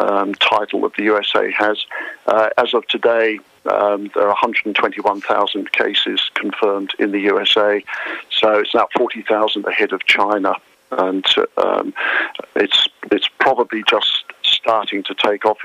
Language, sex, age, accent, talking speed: English, male, 50-69, British, 140 wpm